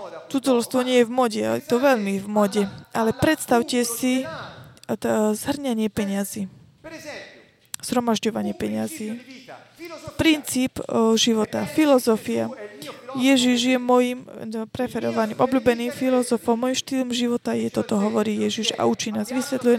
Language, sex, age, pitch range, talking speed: Slovak, female, 20-39, 230-260 Hz, 120 wpm